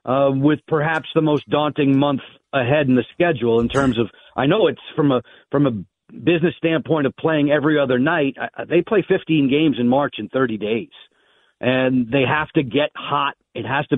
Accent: American